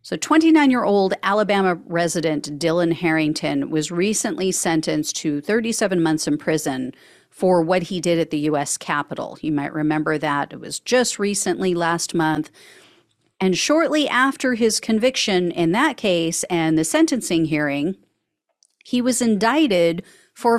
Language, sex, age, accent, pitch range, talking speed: English, female, 40-59, American, 170-245 Hz, 145 wpm